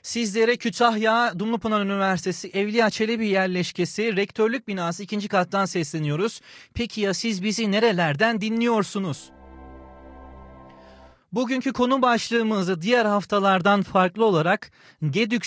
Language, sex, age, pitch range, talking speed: Turkish, male, 30-49, 180-225 Hz, 100 wpm